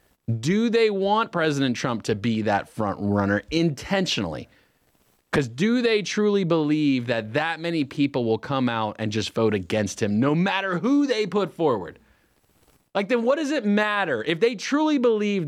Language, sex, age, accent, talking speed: English, male, 30-49, American, 170 wpm